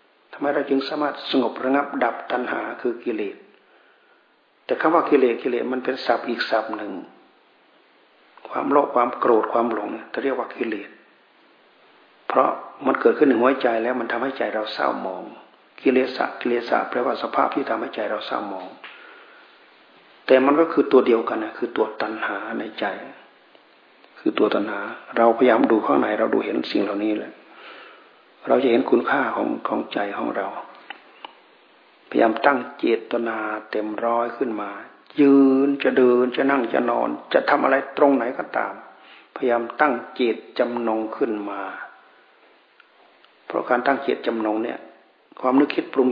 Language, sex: Thai, male